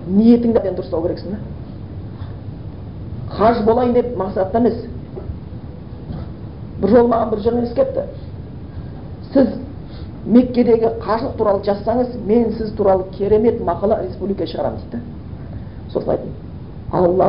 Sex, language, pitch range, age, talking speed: female, Bulgarian, 180-235 Hz, 40-59, 95 wpm